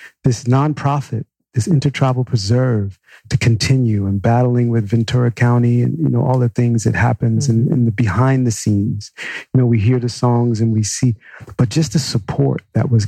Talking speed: 190 wpm